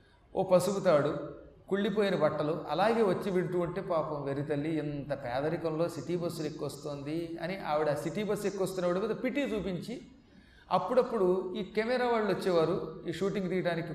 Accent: native